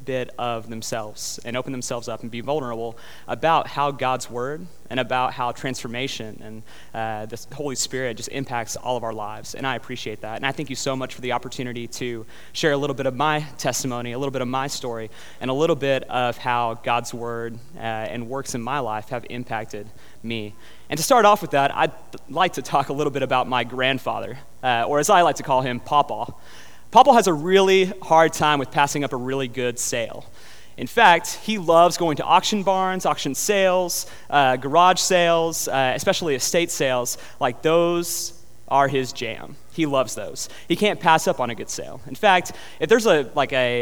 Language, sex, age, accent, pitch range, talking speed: English, male, 30-49, American, 120-150 Hz, 205 wpm